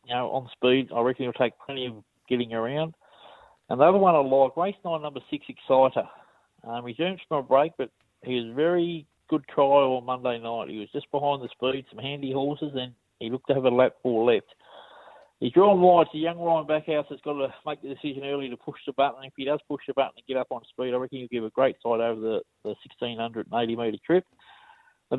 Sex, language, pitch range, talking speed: male, English, 125-150 Hz, 235 wpm